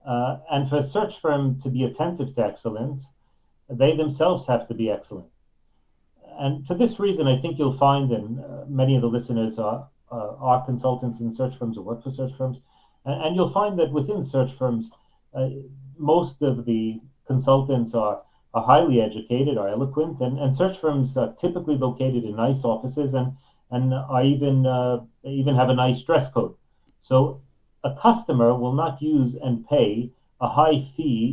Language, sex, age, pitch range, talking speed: English, male, 40-59, 120-140 Hz, 180 wpm